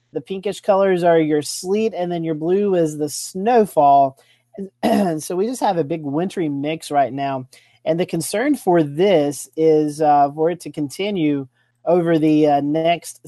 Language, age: English, 30-49